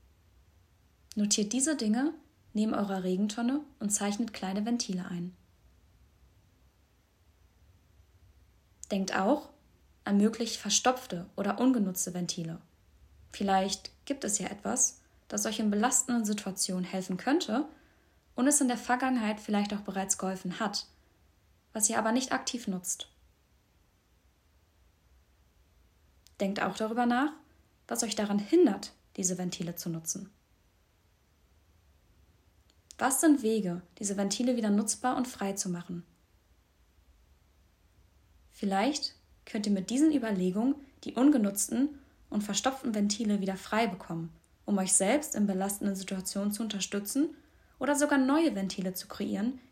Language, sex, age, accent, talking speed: German, female, 20-39, German, 120 wpm